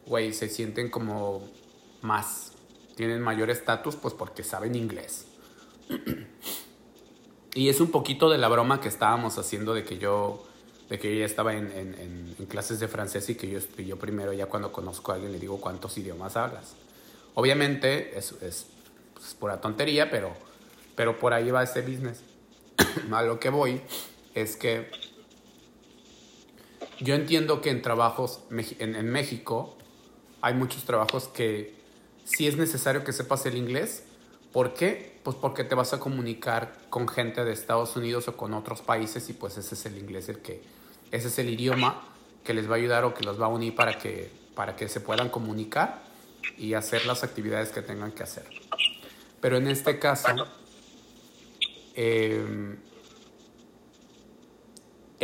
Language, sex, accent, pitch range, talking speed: Spanish, male, Mexican, 110-130 Hz, 165 wpm